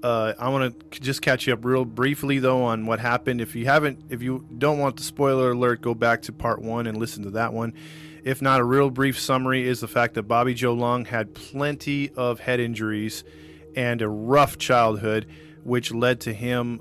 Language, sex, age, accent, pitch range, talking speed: English, male, 20-39, American, 110-135 Hz, 215 wpm